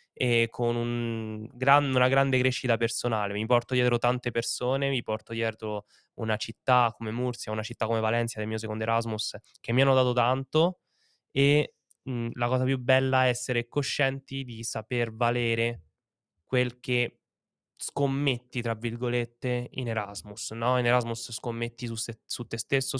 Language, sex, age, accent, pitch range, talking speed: Italian, male, 10-29, native, 115-130 Hz, 160 wpm